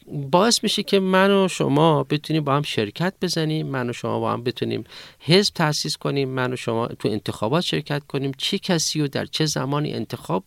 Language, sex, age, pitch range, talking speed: Persian, male, 40-59, 120-165 Hz, 195 wpm